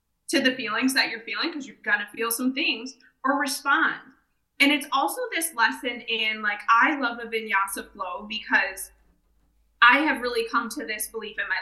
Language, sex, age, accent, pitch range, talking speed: English, female, 20-39, American, 230-275 Hz, 185 wpm